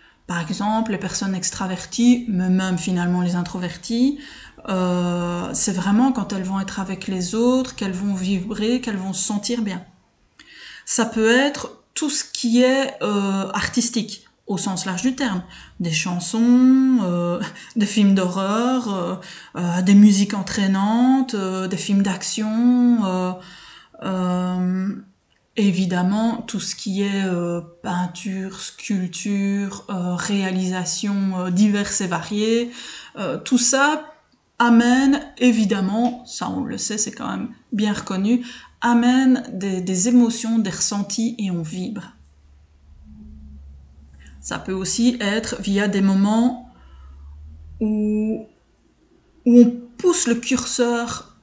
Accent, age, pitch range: French, 20-39, 185-235 Hz